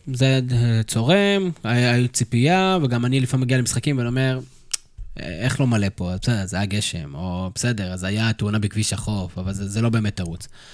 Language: Hebrew